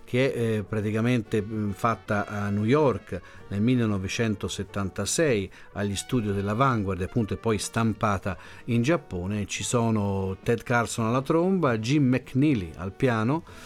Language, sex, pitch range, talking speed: Italian, male, 100-130 Hz, 125 wpm